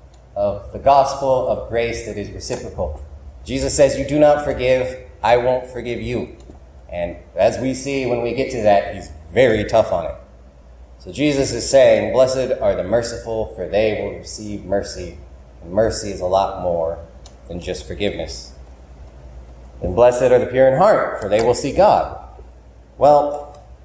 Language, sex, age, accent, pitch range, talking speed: English, male, 30-49, American, 85-135 Hz, 170 wpm